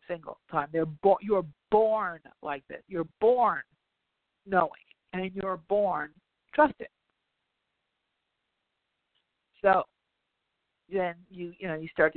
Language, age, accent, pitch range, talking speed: English, 50-69, American, 155-185 Hz, 110 wpm